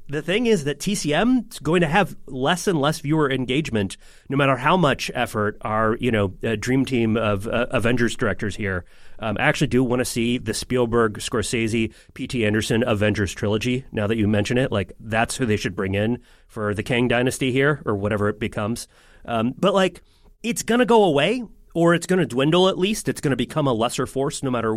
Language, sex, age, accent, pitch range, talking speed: English, male, 30-49, American, 115-170 Hz, 210 wpm